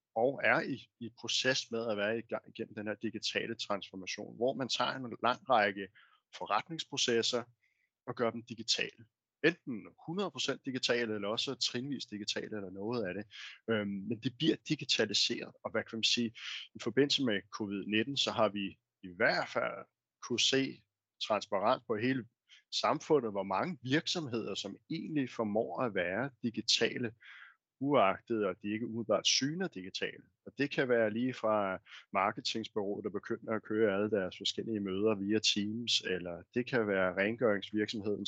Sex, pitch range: male, 105-120 Hz